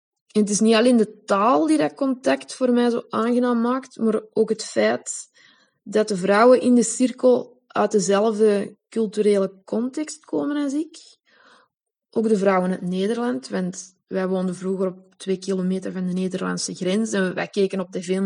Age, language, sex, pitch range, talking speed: 20-39, Dutch, female, 195-235 Hz, 180 wpm